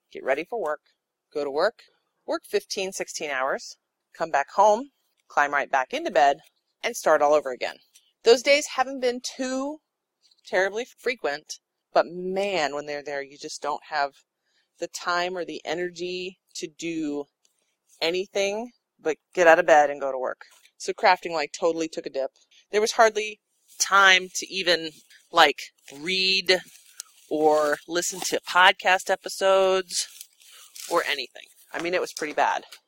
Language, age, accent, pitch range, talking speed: English, 30-49, American, 155-220 Hz, 155 wpm